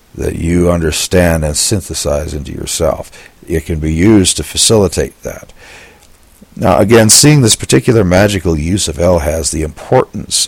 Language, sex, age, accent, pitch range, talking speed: English, male, 60-79, American, 80-100 Hz, 145 wpm